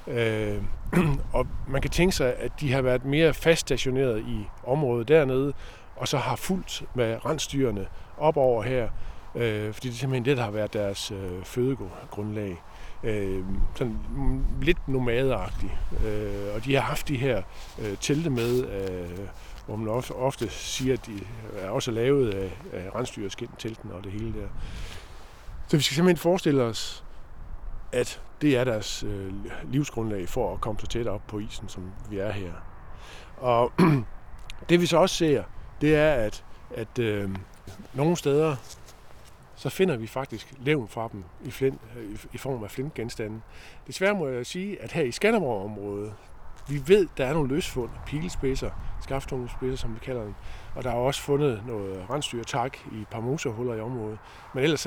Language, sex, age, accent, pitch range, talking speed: Danish, male, 60-79, native, 100-135 Hz, 165 wpm